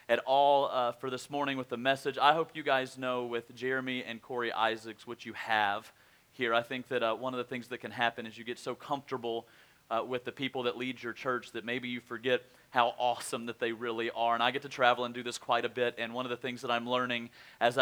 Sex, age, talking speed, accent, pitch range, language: male, 40-59, 260 wpm, American, 120-135 Hz, English